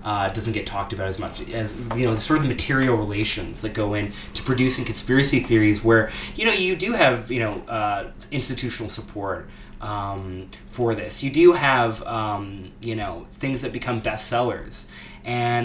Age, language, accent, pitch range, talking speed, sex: 20-39, English, American, 105-125 Hz, 180 wpm, male